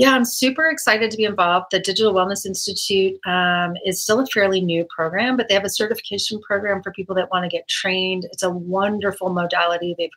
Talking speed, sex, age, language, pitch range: 210 wpm, female, 30-49, English, 170-210 Hz